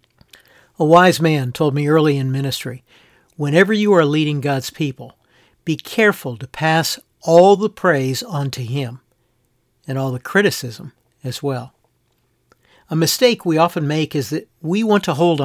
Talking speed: 160 wpm